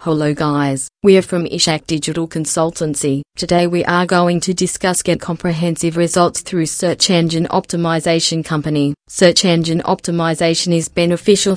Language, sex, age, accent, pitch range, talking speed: English, female, 30-49, Australian, 155-175 Hz, 140 wpm